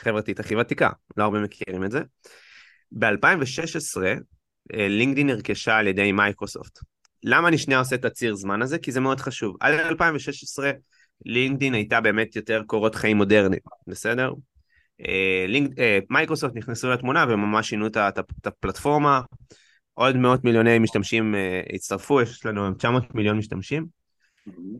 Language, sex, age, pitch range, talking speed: Hebrew, male, 20-39, 105-130 Hz, 140 wpm